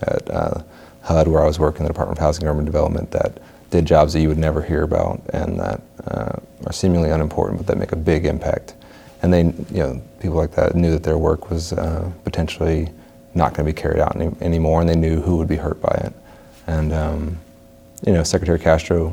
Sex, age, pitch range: male, 30-49, 80-85 Hz